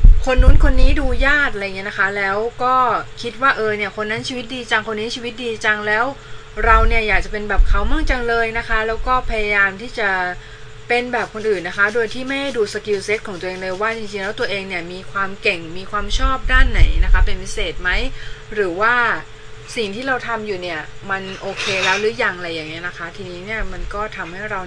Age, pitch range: 20-39, 175-230 Hz